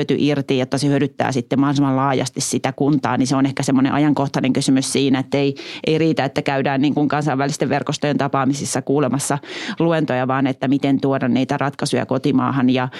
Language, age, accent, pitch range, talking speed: Finnish, 30-49, native, 140-170 Hz, 165 wpm